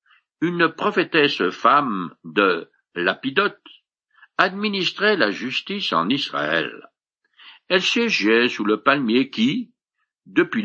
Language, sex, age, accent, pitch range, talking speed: French, male, 60-79, French, 140-235 Hz, 95 wpm